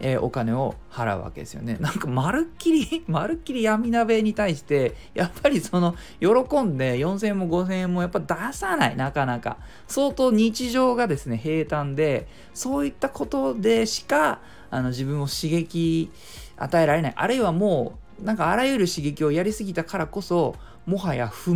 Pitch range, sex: 130-210 Hz, male